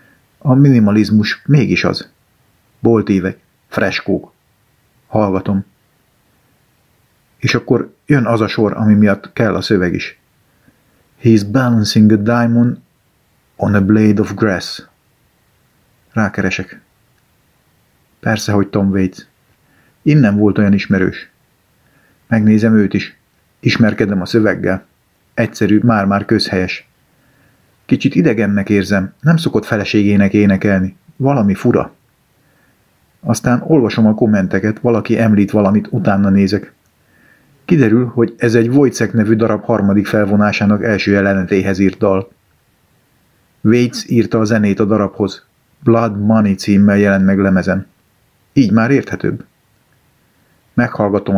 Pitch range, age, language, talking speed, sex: 100-115 Hz, 50-69, Hungarian, 110 wpm, male